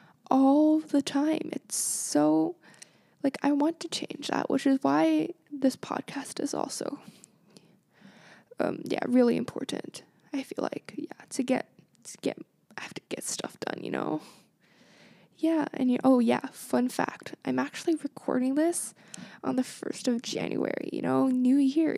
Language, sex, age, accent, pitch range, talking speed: English, female, 10-29, American, 250-305 Hz, 155 wpm